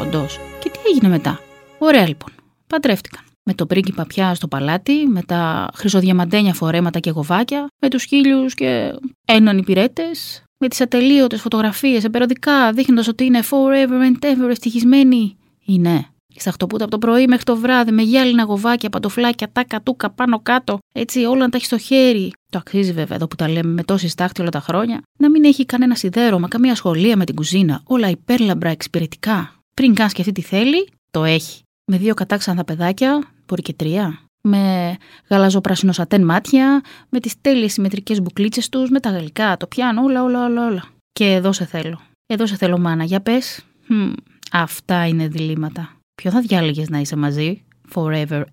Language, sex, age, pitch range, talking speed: Greek, female, 20-39, 175-250 Hz, 175 wpm